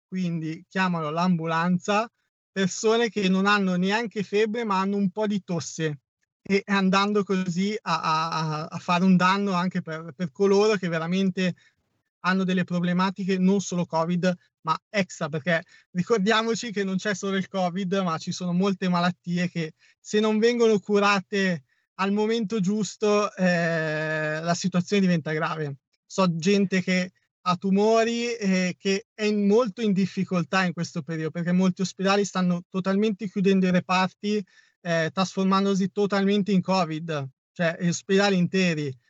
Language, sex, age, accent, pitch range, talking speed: Italian, male, 30-49, native, 165-200 Hz, 145 wpm